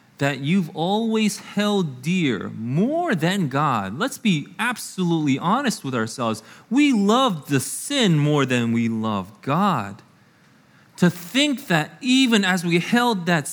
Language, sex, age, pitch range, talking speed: English, male, 30-49, 120-175 Hz, 140 wpm